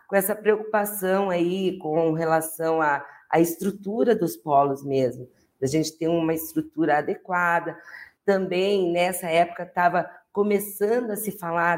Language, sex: Portuguese, female